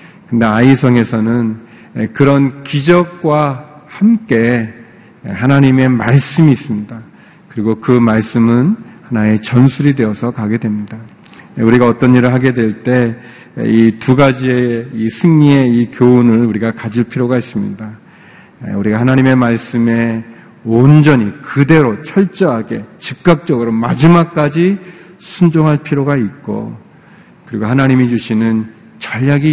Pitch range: 115-140 Hz